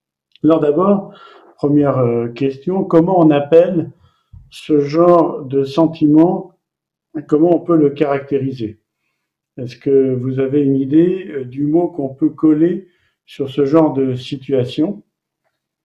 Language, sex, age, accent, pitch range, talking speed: French, male, 50-69, French, 135-165 Hz, 120 wpm